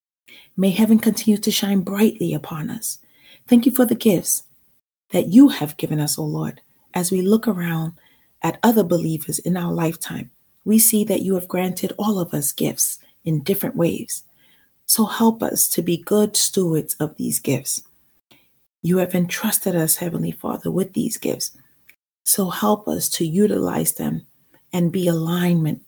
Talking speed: 165 wpm